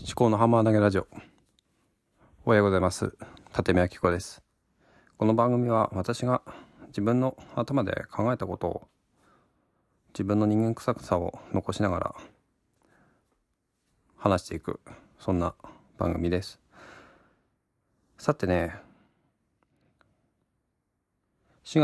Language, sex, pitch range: Japanese, male, 90-115 Hz